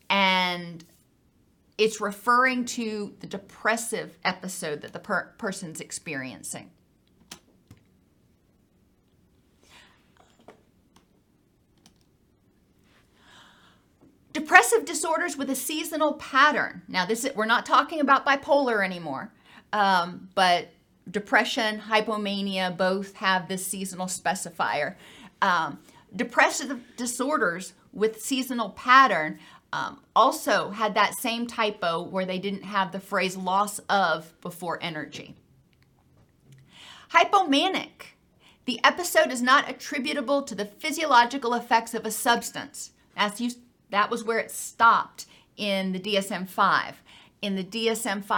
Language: English